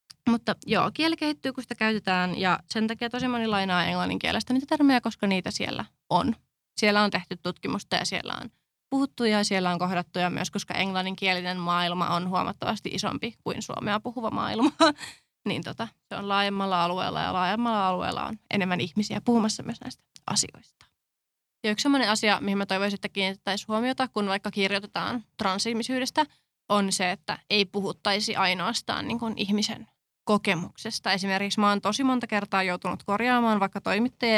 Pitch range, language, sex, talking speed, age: 190-230 Hz, Finnish, female, 155 wpm, 20-39